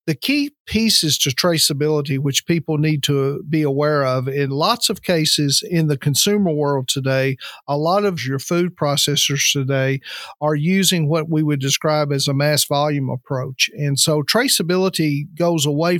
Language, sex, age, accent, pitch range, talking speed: English, male, 50-69, American, 140-165 Hz, 165 wpm